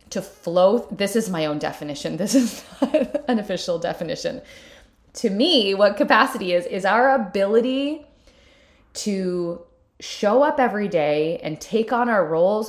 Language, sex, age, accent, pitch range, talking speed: English, female, 20-39, American, 180-265 Hz, 140 wpm